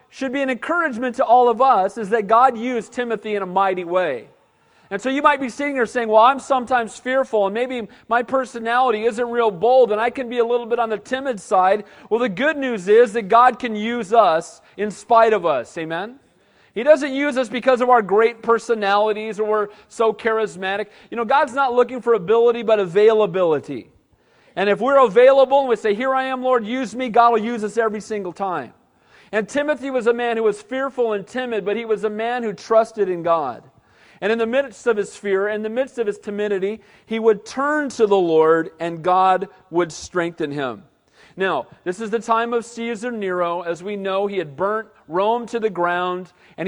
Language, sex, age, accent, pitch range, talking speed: English, male, 40-59, American, 195-245 Hz, 215 wpm